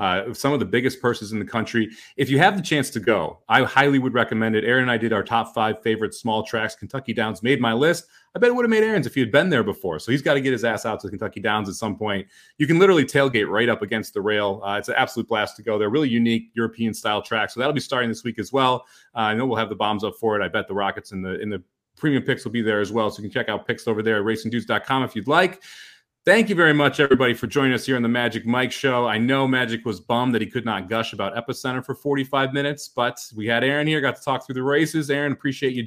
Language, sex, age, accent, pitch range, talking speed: English, male, 30-49, American, 115-145 Hz, 290 wpm